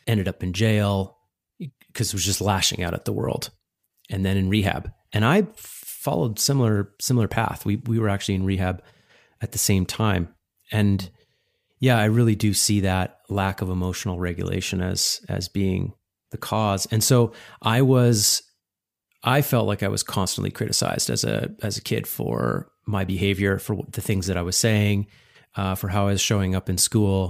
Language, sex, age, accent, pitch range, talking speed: English, male, 30-49, American, 95-115 Hz, 185 wpm